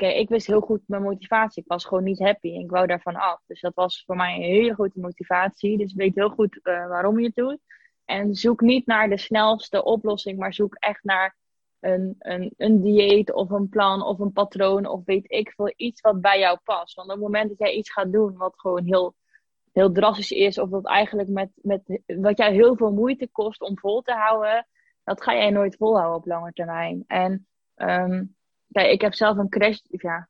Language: Dutch